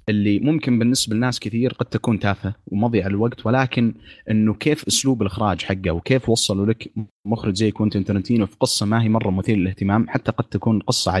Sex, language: male, Arabic